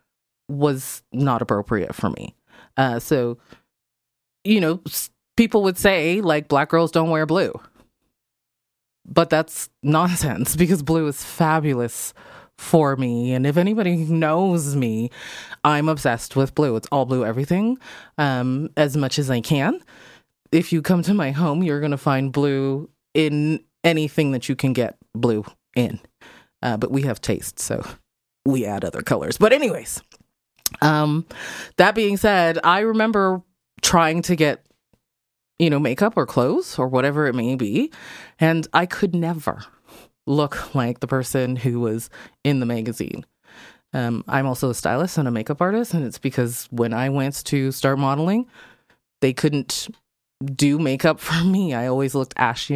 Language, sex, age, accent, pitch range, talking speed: English, female, 20-39, American, 125-165 Hz, 155 wpm